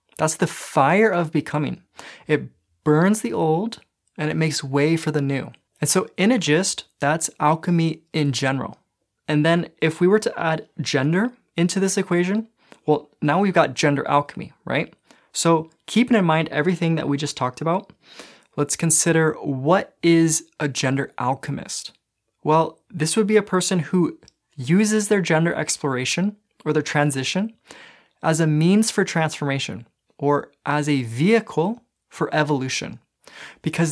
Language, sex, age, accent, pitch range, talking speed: English, male, 20-39, American, 145-185 Hz, 150 wpm